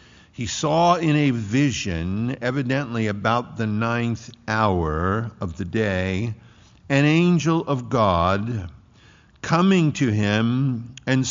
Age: 60-79